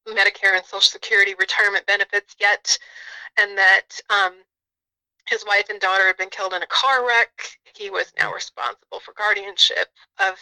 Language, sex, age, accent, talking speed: English, female, 30-49, American, 160 wpm